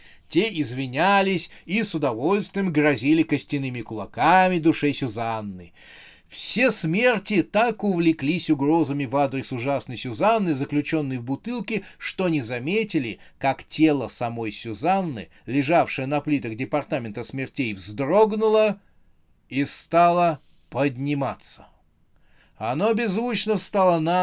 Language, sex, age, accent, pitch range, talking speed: Russian, male, 30-49, native, 120-160 Hz, 105 wpm